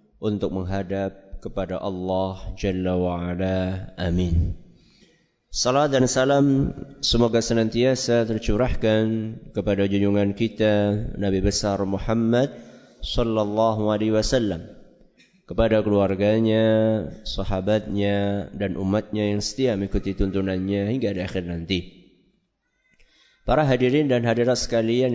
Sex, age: male, 20-39